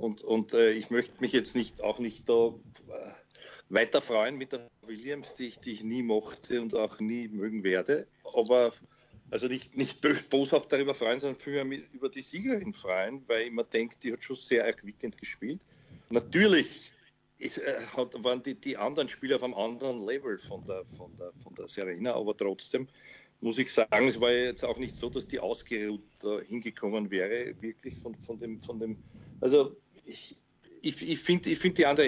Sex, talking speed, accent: male, 190 wpm, Austrian